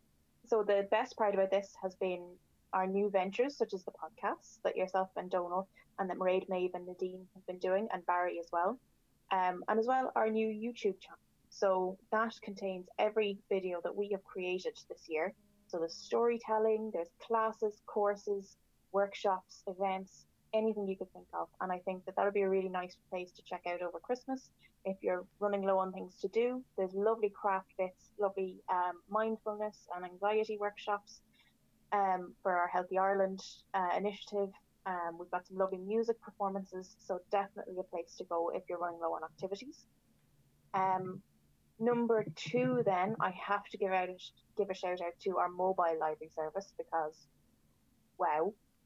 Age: 20-39